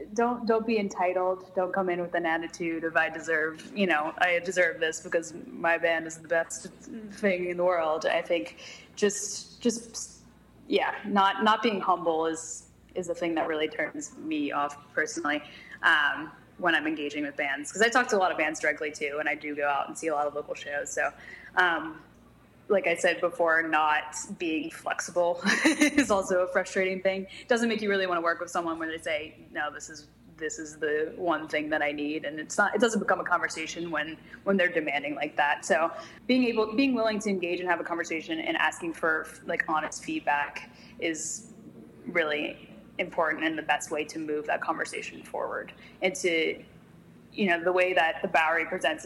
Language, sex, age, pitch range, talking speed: English, female, 20-39, 155-195 Hz, 205 wpm